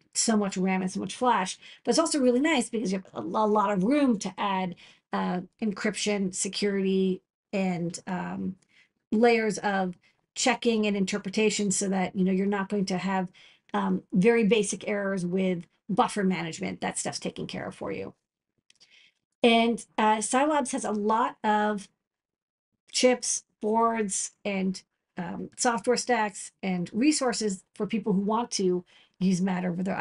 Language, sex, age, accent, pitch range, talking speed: English, female, 40-59, American, 190-230 Hz, 155 wpm